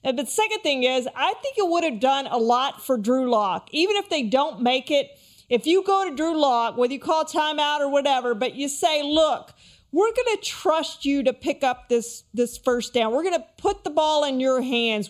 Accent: American